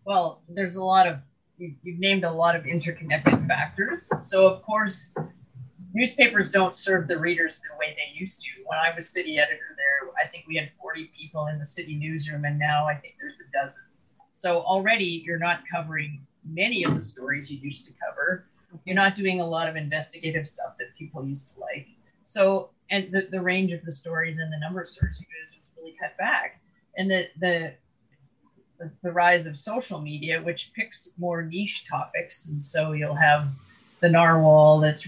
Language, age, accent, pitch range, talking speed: English, 30-49, American, 155-190 Hz, 195 wpm